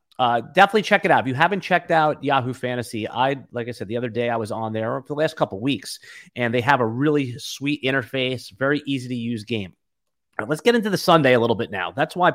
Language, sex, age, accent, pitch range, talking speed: English, male, 30-49, American, 125-160 Hz, 250 wpm